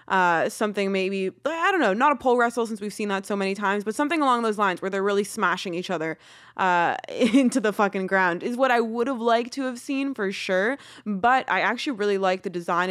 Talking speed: 235 wpm